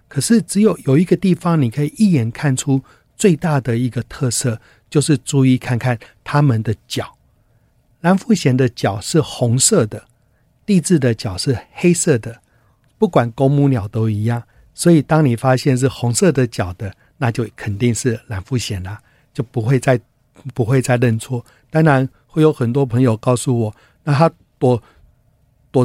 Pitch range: 115-150 Hz